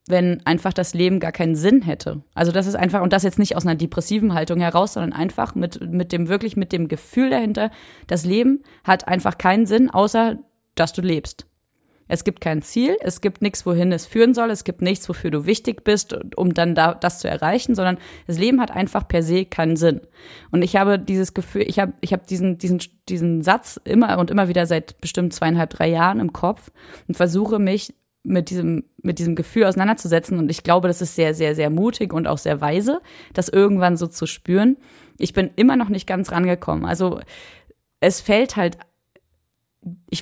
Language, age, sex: German, 30-49, female